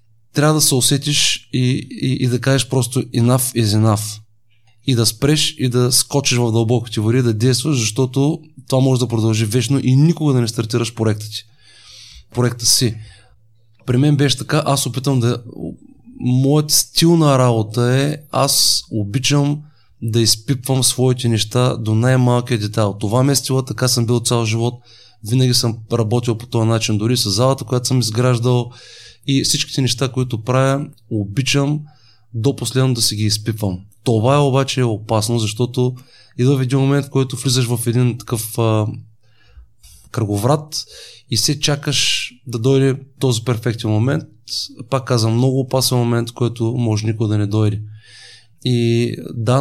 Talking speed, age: 160 wpm, 20-39